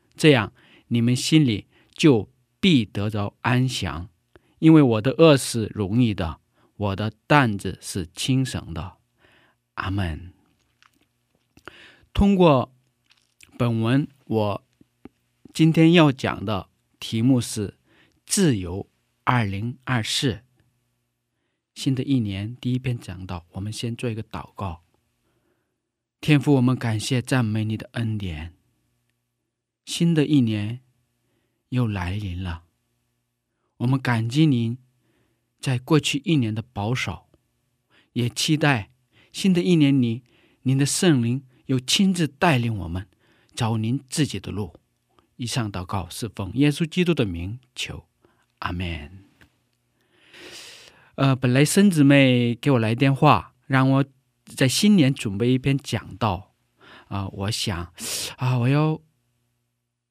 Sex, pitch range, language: male, 100-135 Hz, Korean